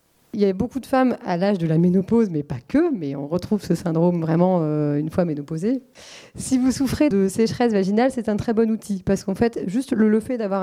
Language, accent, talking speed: French, French, 230 wpm